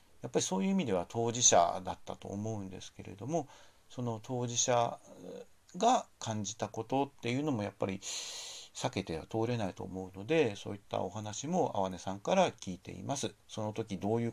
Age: 50-69